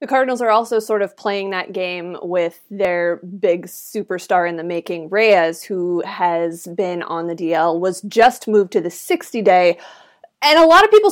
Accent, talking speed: American, 185 wpm